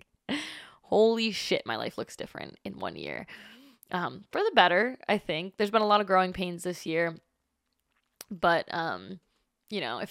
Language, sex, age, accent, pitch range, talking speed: English, female, 20-39, American, 185-235 Hz, 170 wpm